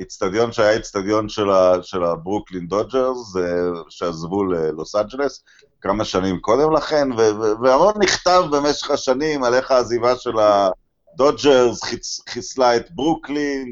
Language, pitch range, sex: Hebrew, 110-145 Hz, male